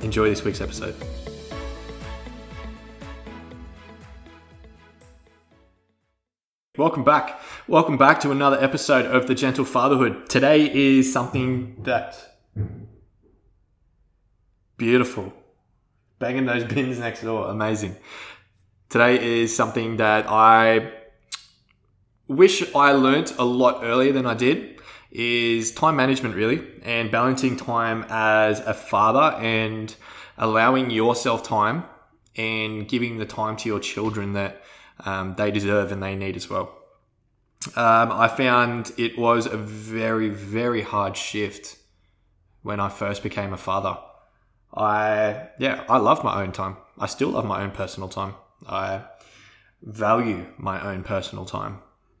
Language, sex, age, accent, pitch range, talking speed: English, male, 20-39, Australian, 100-120 Hz, 120 wpm